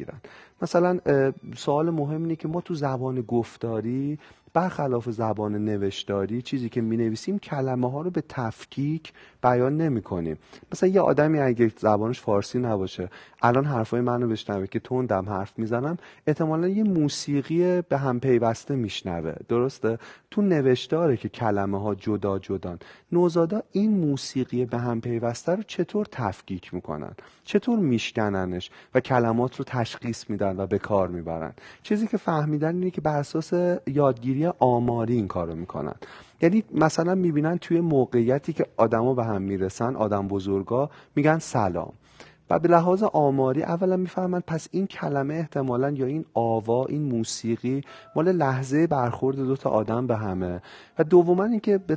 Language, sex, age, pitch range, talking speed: Persian, male, 40-59, 115-160 Hz, 150 wpm